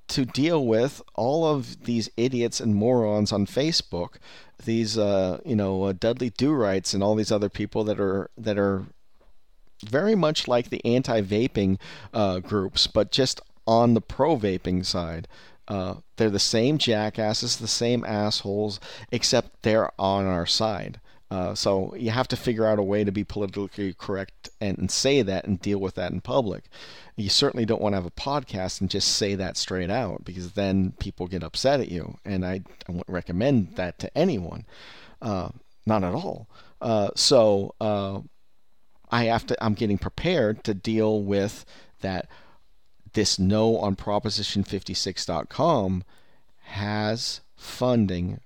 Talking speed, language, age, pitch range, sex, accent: 155 wpm, English, 40-59, 95-115 Hz, male, American